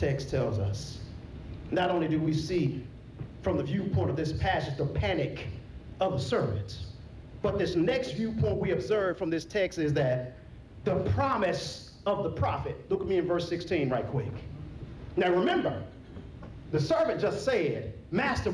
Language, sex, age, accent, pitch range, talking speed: English, male, 40-59, American, 175-255 Hz, 160 wpm